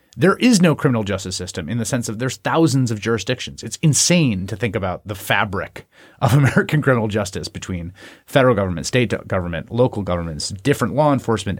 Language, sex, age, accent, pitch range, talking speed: English, male, 30-49, American, 100-140 Hz, 180 wpm